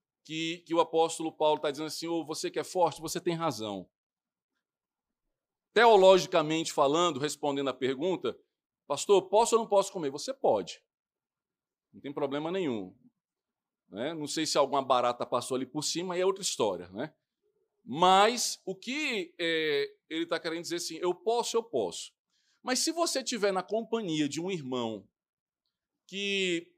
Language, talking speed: Portuguese, 160 wpm